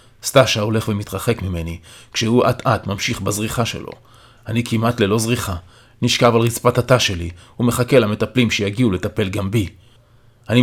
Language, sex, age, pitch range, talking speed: Hebrew, male, 30-49, 105-125 Hz, 140 wpm